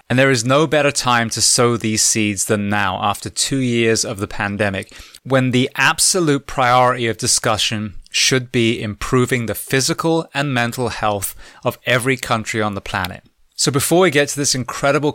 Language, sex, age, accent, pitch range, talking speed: English, male, 20-39, British, 110-145 Hz, 180 wpm